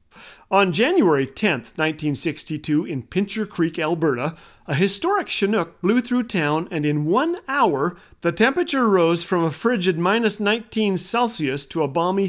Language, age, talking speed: English, 40-59, 145 wpm